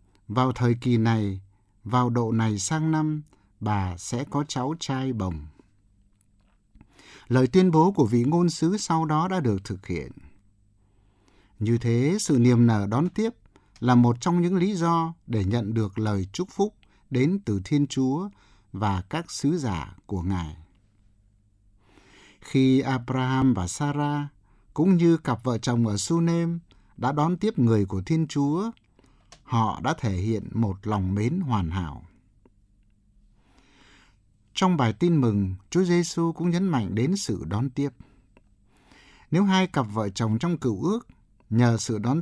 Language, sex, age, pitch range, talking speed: Vietnamese, male, 60-79, 105-160 Hz, 155 wpm